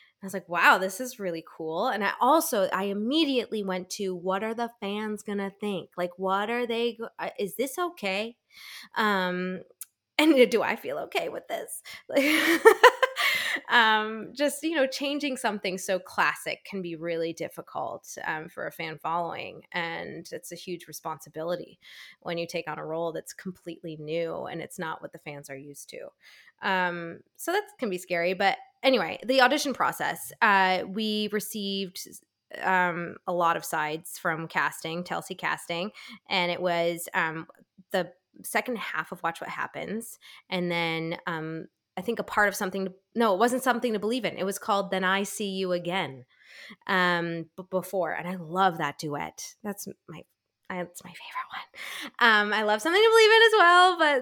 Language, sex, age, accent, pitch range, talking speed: English, female, 20-39, American, 175-245 Hz, 180 wpm